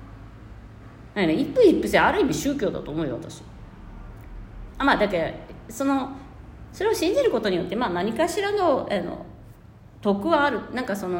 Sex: female